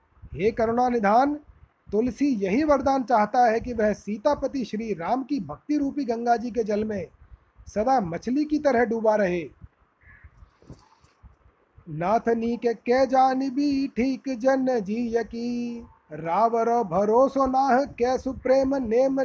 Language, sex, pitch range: Hindi, male, 230-265 Hz